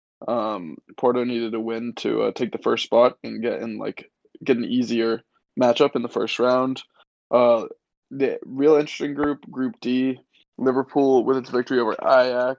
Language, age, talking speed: English, 20-39, 170 wpm